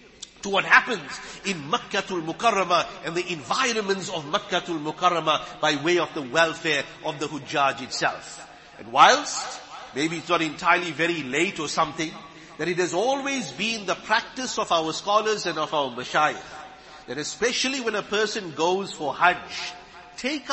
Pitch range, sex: 170-230 Hz, male